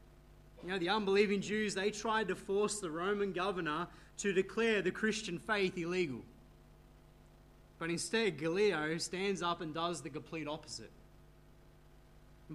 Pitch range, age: 160-205 Hz, 20-39